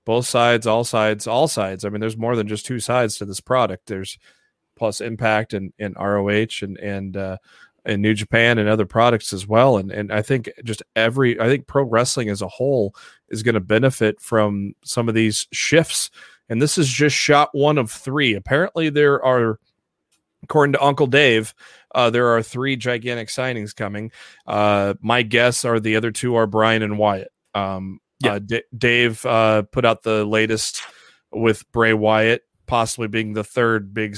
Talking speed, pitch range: 185 wpm, 105-120 Hz